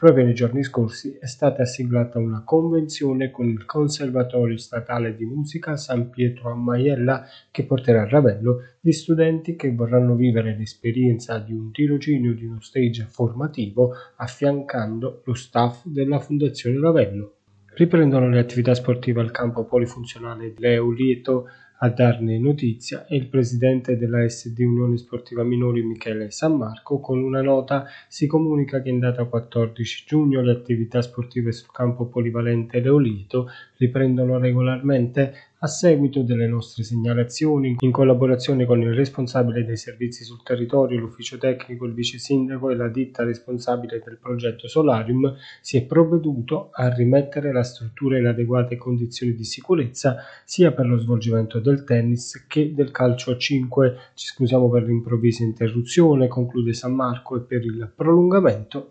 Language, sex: Italian, male